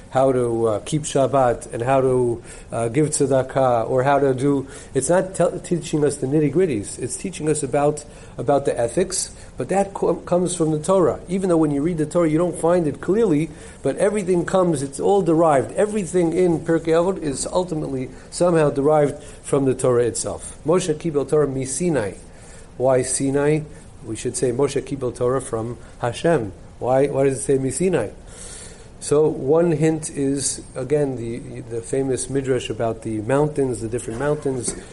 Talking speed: 175 wpm